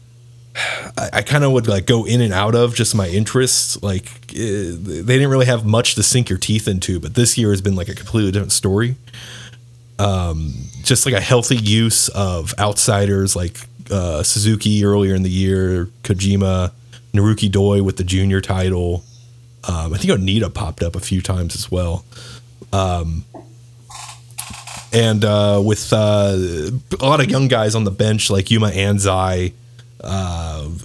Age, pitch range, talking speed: 30-49, 95-120 Hz, 165 wpm